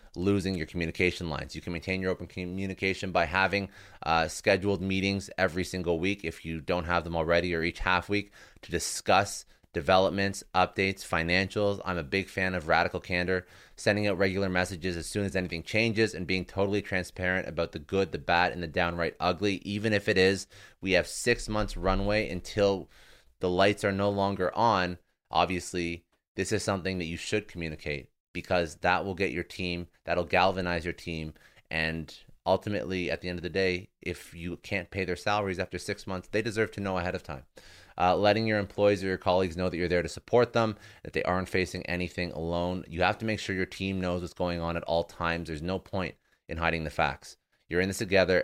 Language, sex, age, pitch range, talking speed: English, male, 30-49, 85-100 Hz, 205 wpm